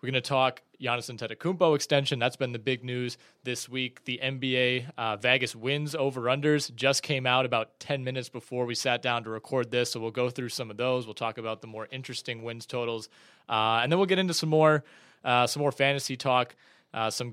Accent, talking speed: American, 225 wpm